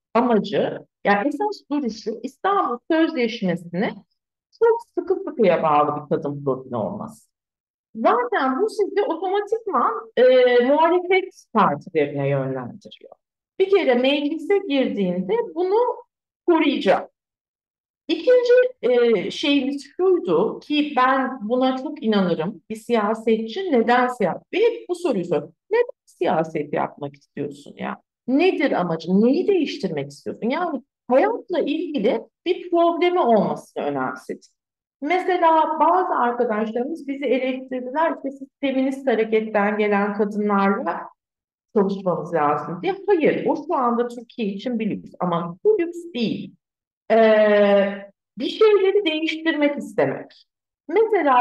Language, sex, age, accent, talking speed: Turkish, female, 50-69, native, 105 wpm